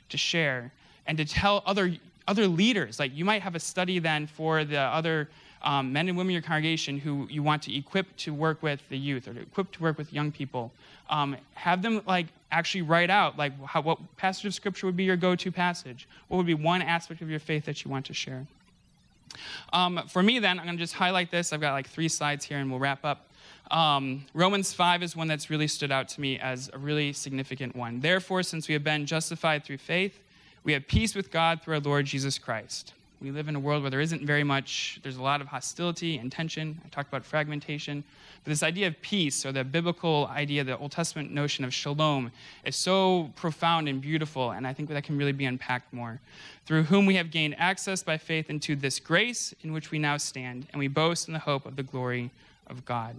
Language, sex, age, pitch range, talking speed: English, male, 20-39, 140-170 Hz, 230 wpm